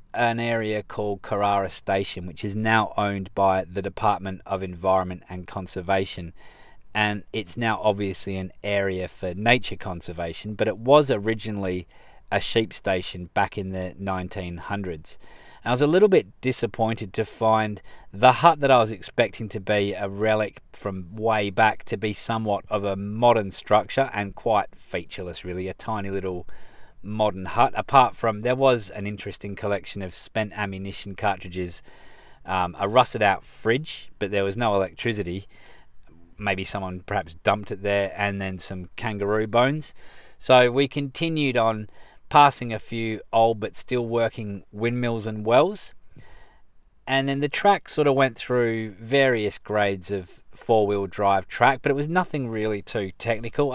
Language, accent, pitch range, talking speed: English, Australian, 95-115 Hz, 155 wpm